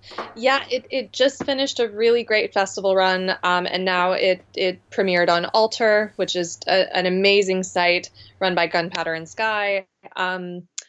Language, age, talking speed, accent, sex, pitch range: English, 20-39, 165 wpm, American, female, 175-220 Hz